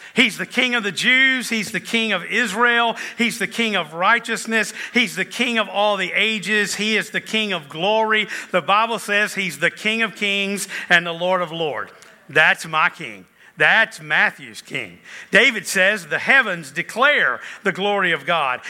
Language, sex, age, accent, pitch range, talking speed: English, male, 50-69, American, 185-240 Hz, 185 wpm